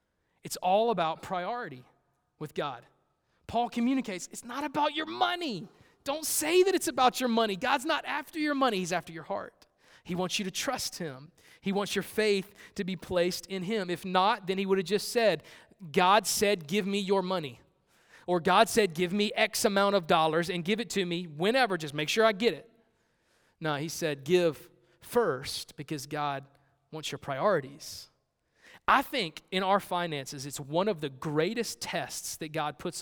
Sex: male